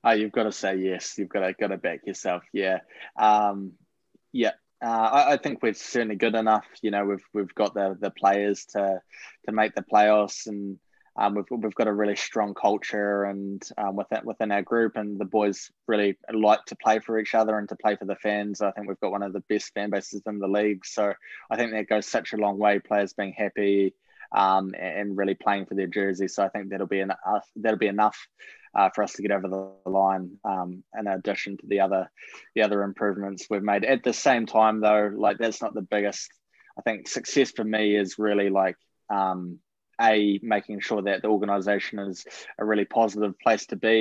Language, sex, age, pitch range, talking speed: English, male, 20-39, 100-105 Hz, 220 wpm